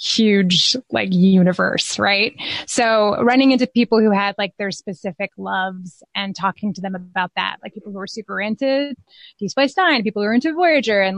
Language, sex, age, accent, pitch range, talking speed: English, female, 20-39, American, 195-240 Hz, 190 wpm